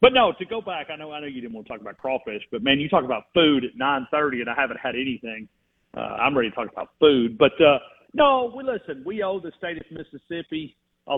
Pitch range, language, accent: 130-165 Hz, English, American